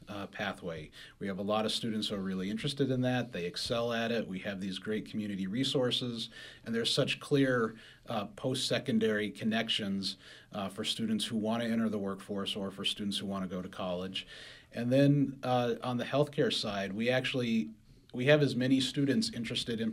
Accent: American